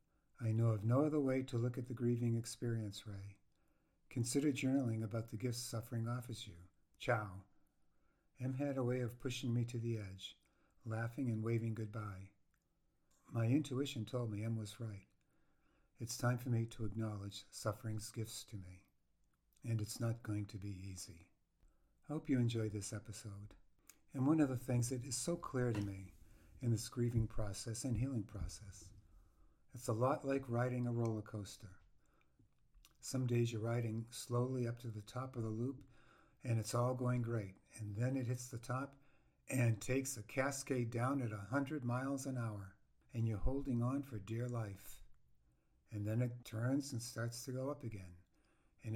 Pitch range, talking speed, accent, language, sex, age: 105-125 Hz, 175 wpm, American, English, male, 50-69